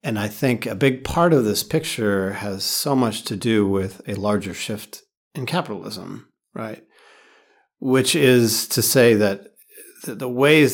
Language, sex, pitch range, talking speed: English, male, 105-135 Hz, 155 wpm